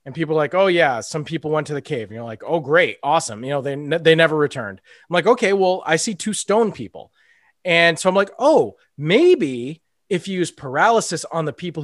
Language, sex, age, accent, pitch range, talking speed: English, male, 30-49, American, 145-190 Hz, 235 wpm